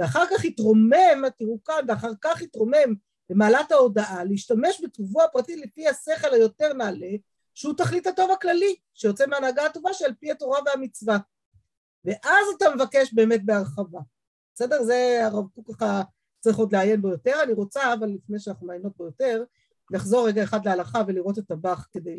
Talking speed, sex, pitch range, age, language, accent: 160 wpm, female, 195-275 Hz, 50-69, Hebrew, native